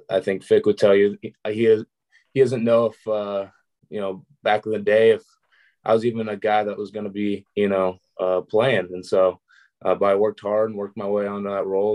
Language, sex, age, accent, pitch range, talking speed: English, male, 20-39, American, 95-110 Hz, 235 wpm